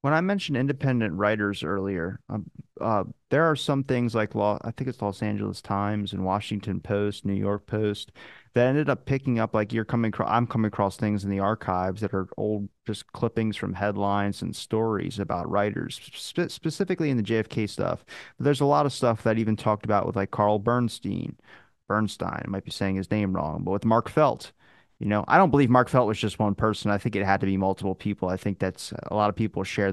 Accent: American